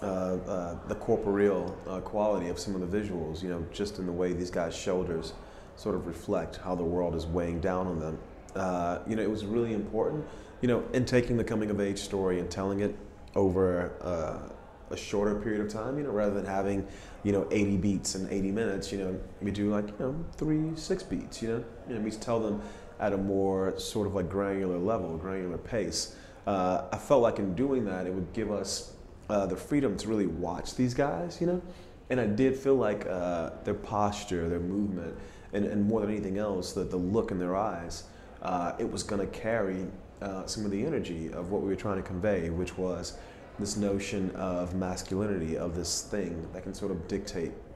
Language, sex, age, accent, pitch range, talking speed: English, male, 30-49, American, 90-105 Hz, 210 wpm